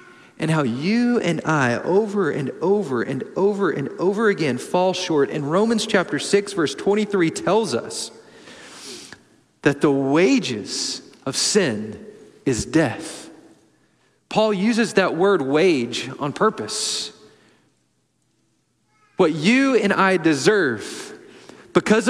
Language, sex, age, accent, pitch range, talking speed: English, male, 40-59, American, 175-250 Hz, 115 wpm